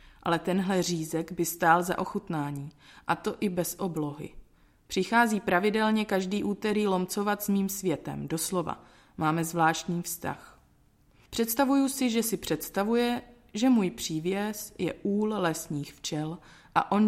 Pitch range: 155-195 Hz